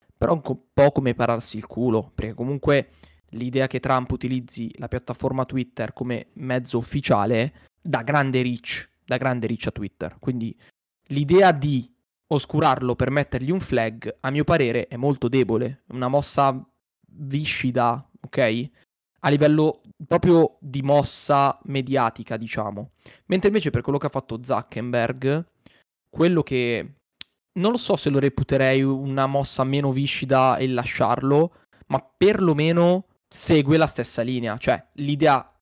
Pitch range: 125-145 Hz